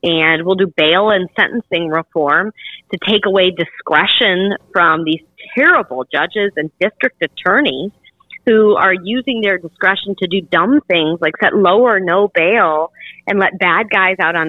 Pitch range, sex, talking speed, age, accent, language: 170-230 Hz, female, 160 wpm, 40-59, American, English